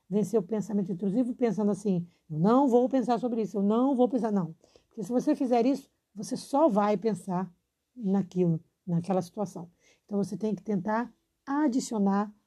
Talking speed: 170 wpm